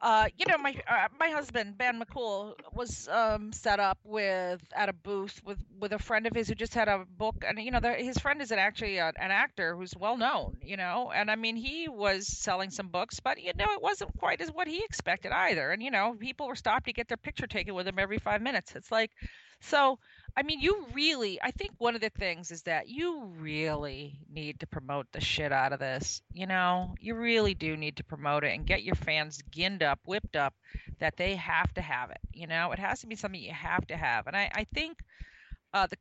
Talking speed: 240 wpm